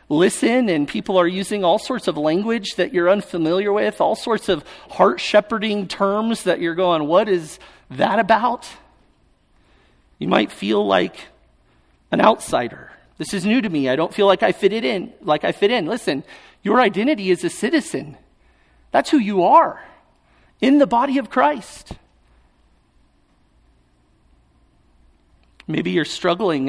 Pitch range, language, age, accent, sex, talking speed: 155-225 Hz, English, 40-59, American, male, 150 wpm